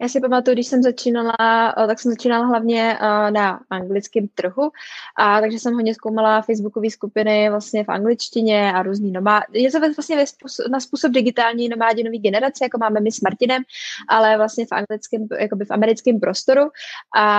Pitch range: 210-235 Hz